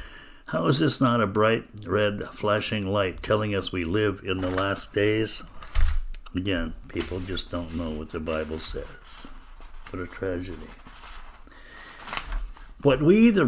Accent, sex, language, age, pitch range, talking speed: American, male, English, 60-79, 95-125 Hz, 145 wpm